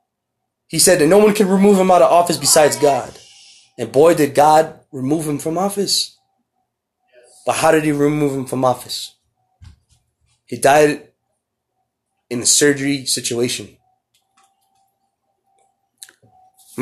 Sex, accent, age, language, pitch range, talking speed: male, American, 30-49, English, 130-190 Hz, 130 wpm